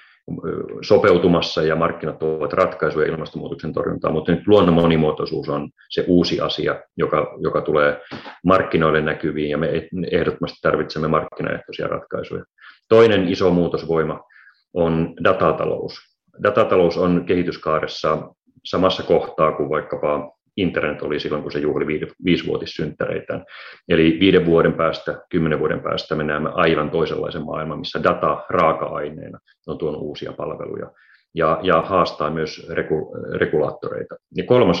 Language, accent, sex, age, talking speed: Finnish, native, male, 30-49, 120 wpm